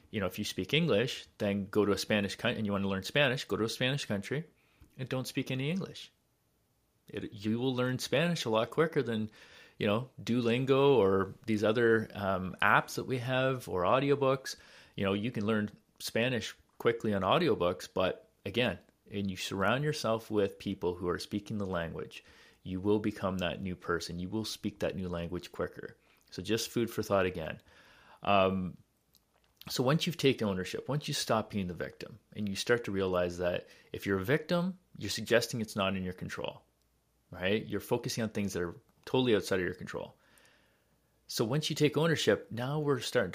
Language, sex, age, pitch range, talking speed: English, male, 30-49, 95-130 Hz, 195 wpm